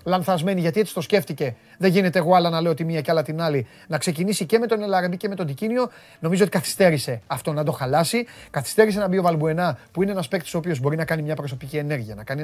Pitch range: 150-195 Hz